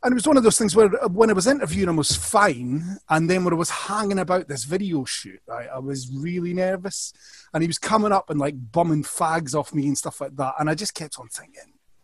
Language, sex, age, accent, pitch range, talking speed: English, male, 30-49, British, 140-180 Hz, 255 wpm